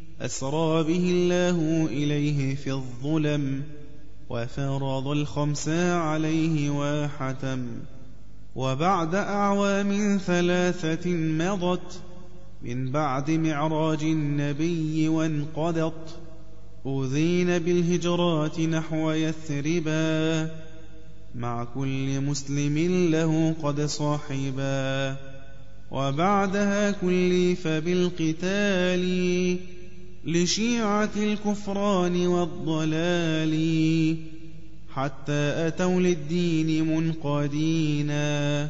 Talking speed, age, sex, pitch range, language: 60 wpm, 20-39, male, 145-175 Hz, Arabic